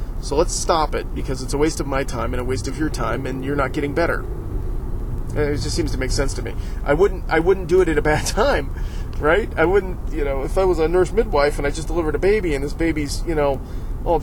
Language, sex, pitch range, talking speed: English, male, 125-175 Hz, 265 wpm